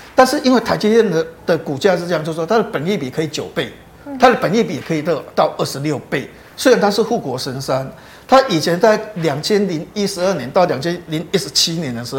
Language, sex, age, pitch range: Chinese, male, 50-69, 160-215 Hz